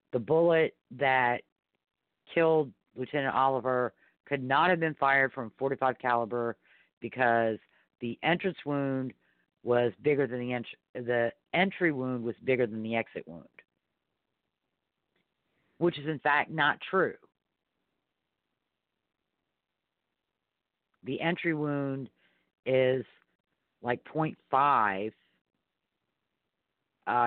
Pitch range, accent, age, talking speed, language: 120-145 Hz, American, 50-69, 100 wpm, English